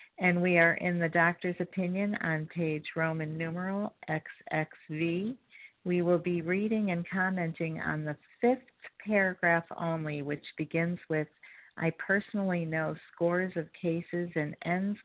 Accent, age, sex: American, 50-69, female